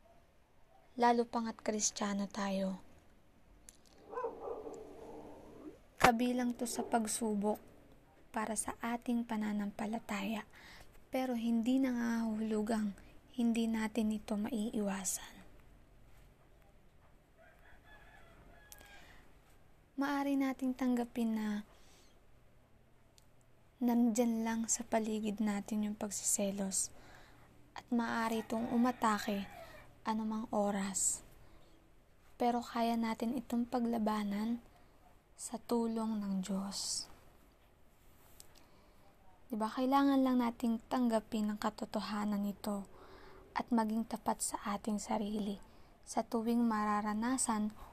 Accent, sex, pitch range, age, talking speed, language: native, female, 210-240 Hz, 20-39, 80 wpm, Filipino